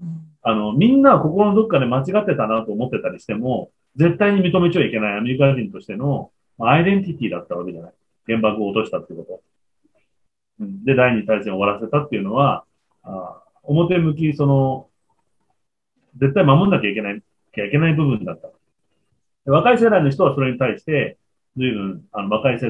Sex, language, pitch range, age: male, Japanese, 115-185 Hz, 30-49